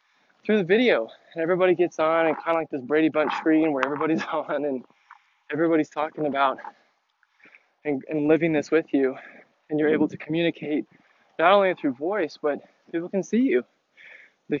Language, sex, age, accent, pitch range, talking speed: English, male, 20-39, American, 145-175 Hz, 175 wpm